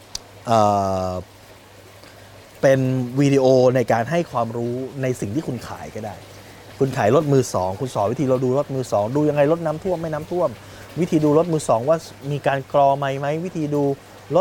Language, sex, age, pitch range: Thai, male, 20-39, 105-150 Hz